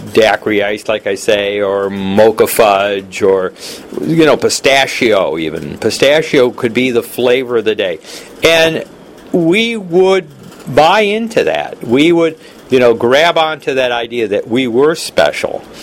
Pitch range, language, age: 115-160 Hz, English, 50-69